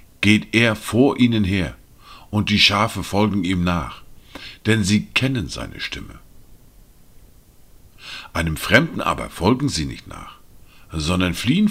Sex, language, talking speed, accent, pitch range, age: male, German, 130 wpm, German, 85-125 Hz, 50-69